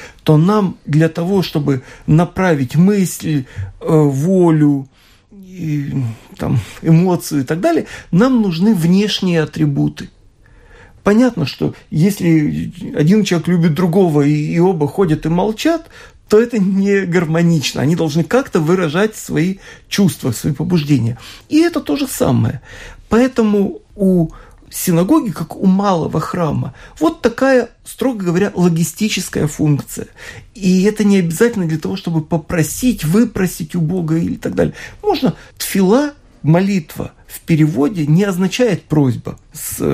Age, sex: 40-59, male